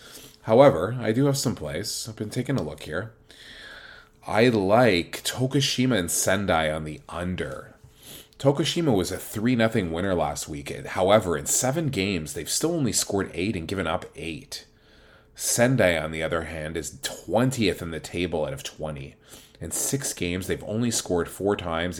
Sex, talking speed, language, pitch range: male, 165 wpm, English, 85-120 Hz